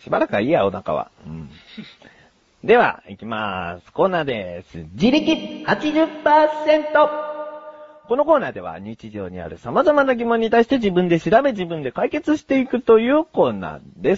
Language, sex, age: Japanese, male, 40-59